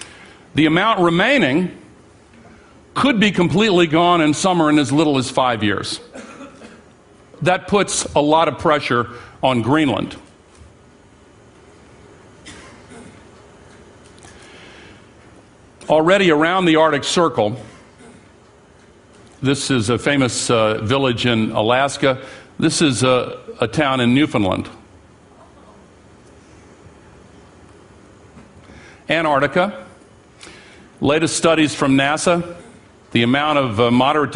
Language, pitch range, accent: English, 120-160 Hz, American